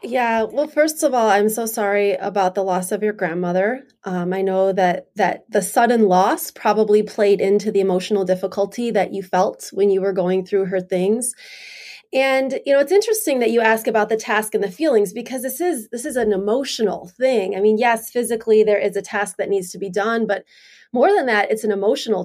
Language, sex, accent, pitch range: English, female, American, 200-235 Hz